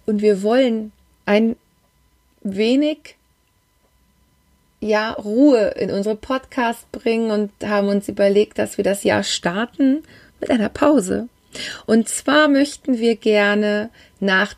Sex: female